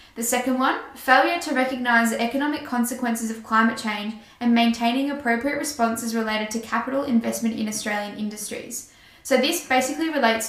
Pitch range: 215-240 Hz